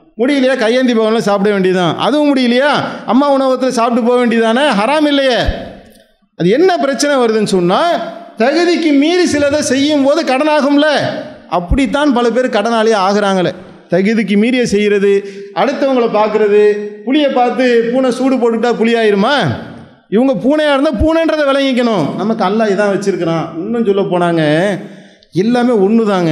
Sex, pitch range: male, 200-270 Hz